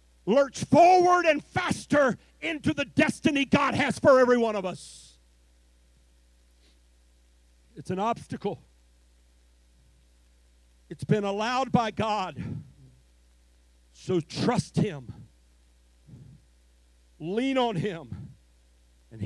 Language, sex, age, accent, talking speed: English, male, 50-69, American, 90 wpm